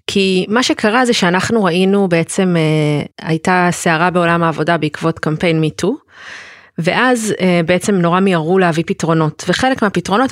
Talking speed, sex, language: 140 wpm, female, Hebrew